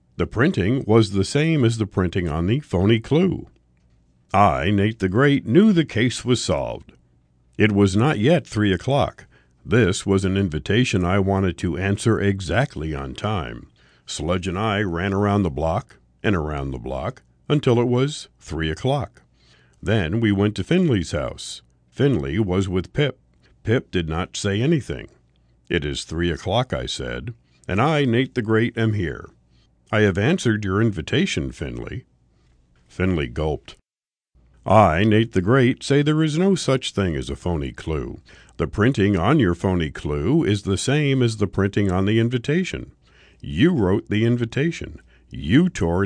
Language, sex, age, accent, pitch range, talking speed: English, male, 50-69, American, 80-115 Hz, 165 wpm